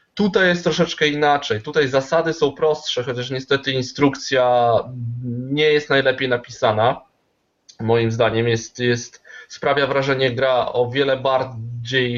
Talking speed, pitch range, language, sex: 115 wpm, 135-170 Hz, Polish, male